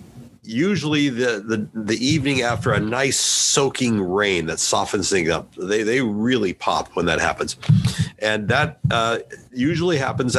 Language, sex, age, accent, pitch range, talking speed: English, male, 50-69, American, 110-145 Hz, 150 wpm